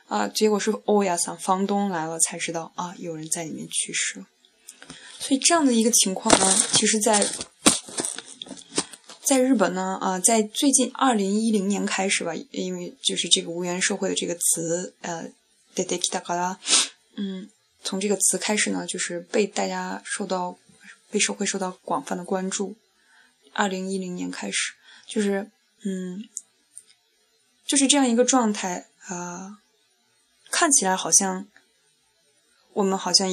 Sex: female